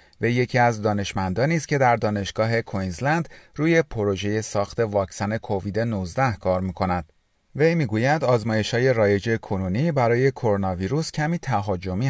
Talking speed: 135 wpm